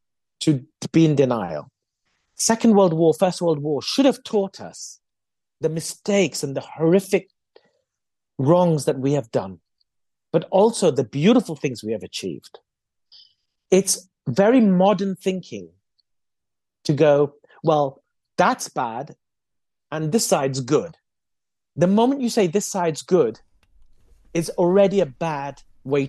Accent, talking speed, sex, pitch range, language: British, 130 wpm, male, 135-195 Hz, English